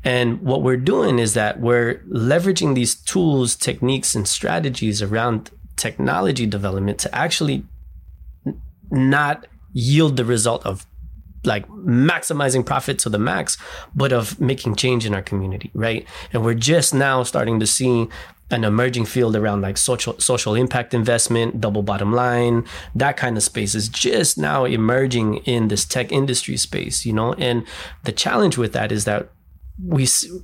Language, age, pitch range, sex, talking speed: English, 20-39, 100-125 Hz, male, 155 wpm